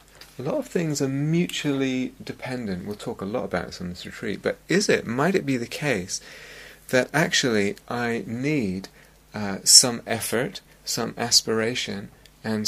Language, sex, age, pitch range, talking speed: English, male, 30-49, 100-130 Hz, 160 wpm